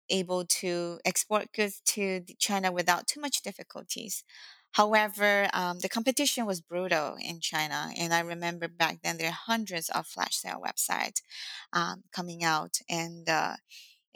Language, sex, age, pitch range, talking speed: English, female, 20-39, 170-195 Hz, 150 wpm